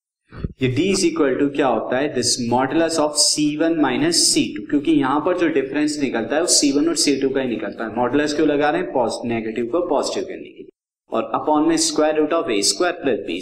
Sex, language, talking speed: male, Hindi, 85 wpm